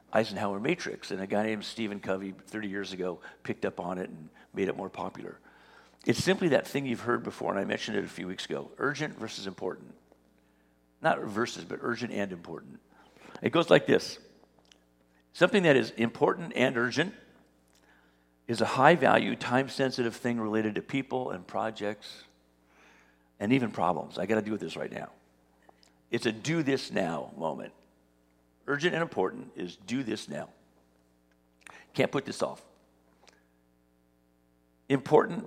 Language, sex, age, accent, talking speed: English, male, 50-69, American, 155 wpm